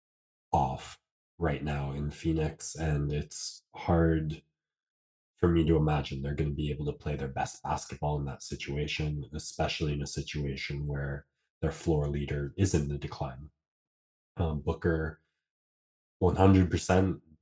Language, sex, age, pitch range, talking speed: English, male, 20-39, 75-90 Hz, 140 wpm